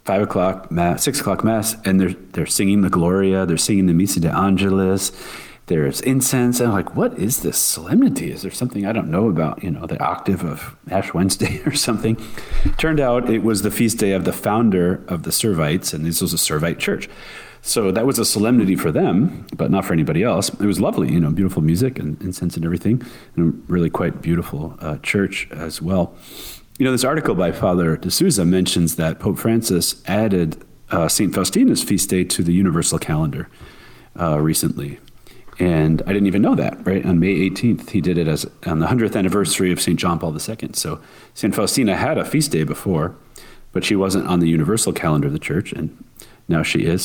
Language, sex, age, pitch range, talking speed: English, male, 40-59, 85-110 Hz, 205 wpm